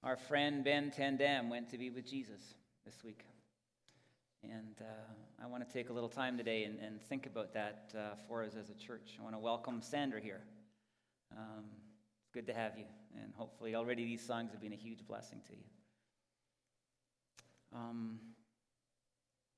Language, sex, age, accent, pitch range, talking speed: English, male, 40-59, American, 110-130 Hz, 170 wpm